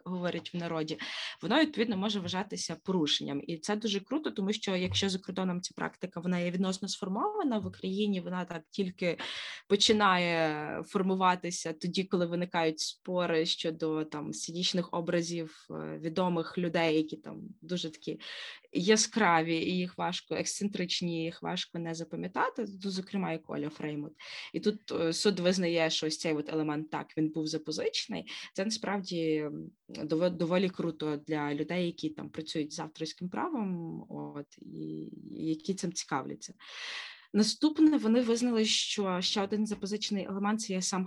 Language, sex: Ukrainian, female